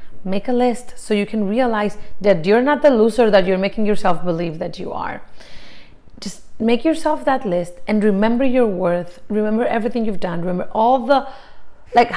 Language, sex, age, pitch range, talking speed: English, female, 30-49, 195-255 Hz, 185 wpm